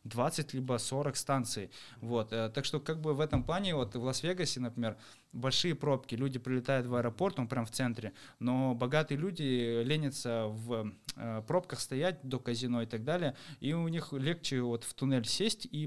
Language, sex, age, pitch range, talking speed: Russian, male, 20-39, 115-140 Hz, 170 wpm